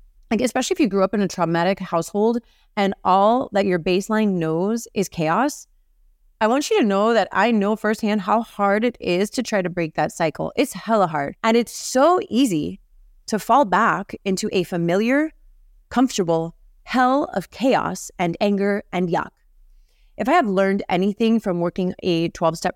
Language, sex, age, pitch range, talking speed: English, female, 30-49, 165-215 Hz, 175 wpm